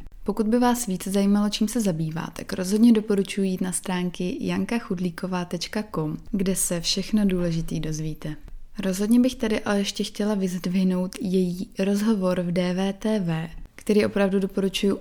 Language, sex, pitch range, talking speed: Czech, female, 180-215 Hz, 130 wpm